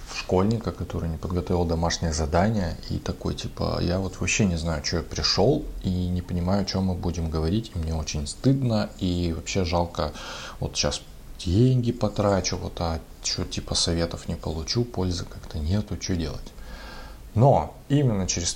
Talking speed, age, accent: 165 wpm, 20-39, native